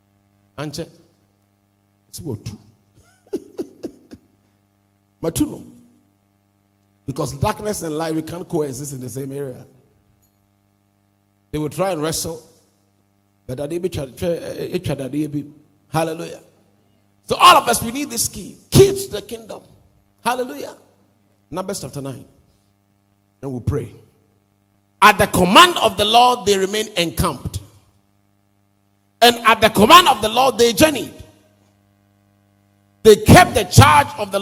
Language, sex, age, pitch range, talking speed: English, male, 50-69, 100-170 Hz, 125 wpm